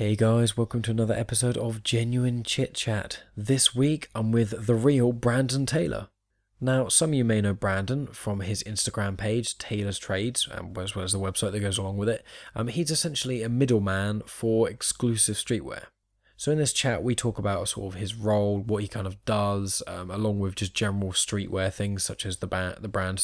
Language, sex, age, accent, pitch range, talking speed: English, male, 10-29, British, 100-115 Hz, 200 wpm